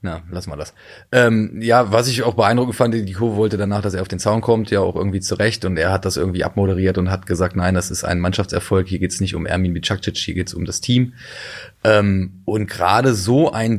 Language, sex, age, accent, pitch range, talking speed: German, male, 20-39, German, 95-110 Hz, 255 wpm